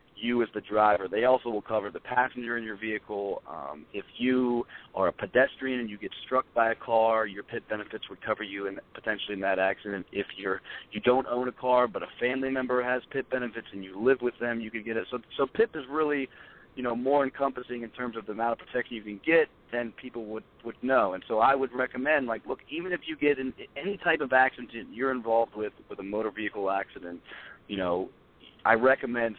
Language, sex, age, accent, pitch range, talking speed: English, male, 40-59, American, 105-130 Hz, 230 wpm